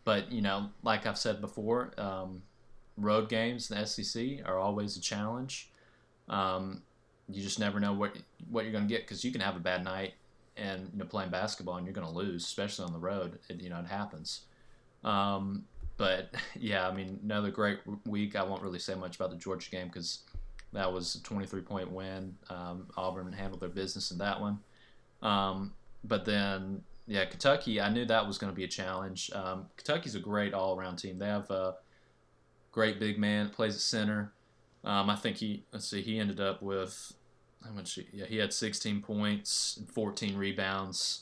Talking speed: 195 wpm